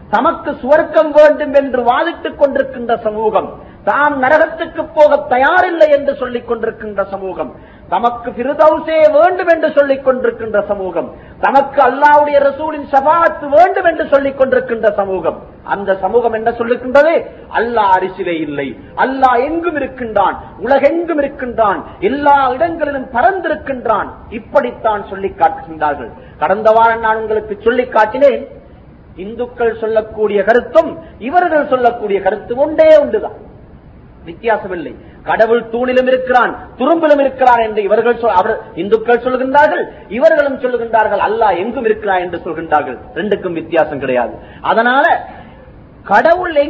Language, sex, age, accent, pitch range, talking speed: Tamil, male, 40-59, native, 215-295 Hz, 80 wpm